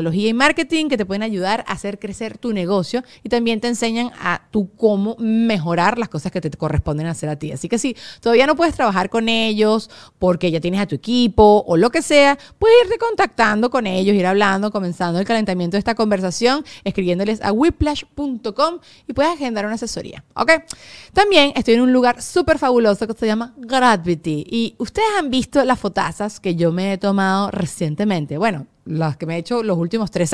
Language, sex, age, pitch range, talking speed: Spanish, female, 30-49, 185-250 Hz, 200 wpm